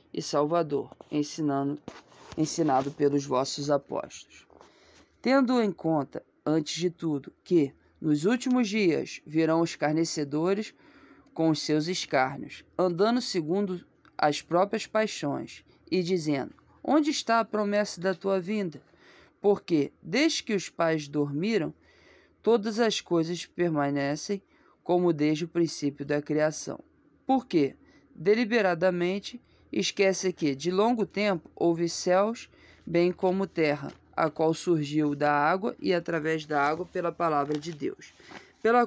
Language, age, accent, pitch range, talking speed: Portuguese, 20-39, Brazilian, 155-210 Hz, 125 wpm